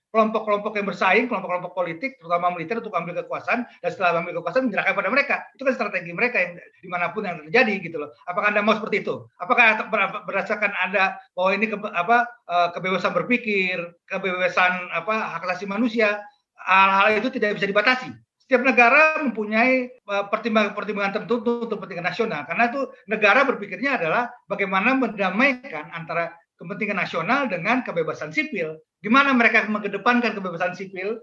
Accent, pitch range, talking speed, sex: native, 180-235 Hz, 150 wpm, male